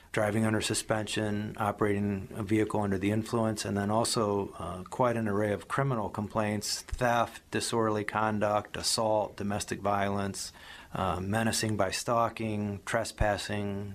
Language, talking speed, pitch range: English, 130 wpm, 105-115 Hz